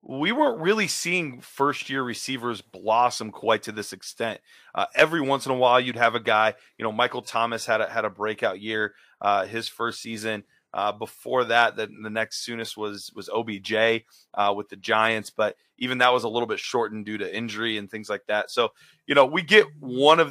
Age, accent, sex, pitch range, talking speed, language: 30-49, American, male, 110-135 Hz, 210 wpm, English